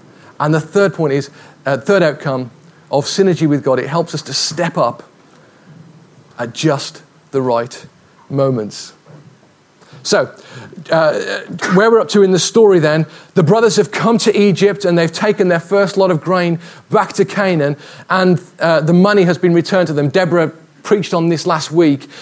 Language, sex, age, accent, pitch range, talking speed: English, male, 30-49, British, 145-185 Hz, 175 wpm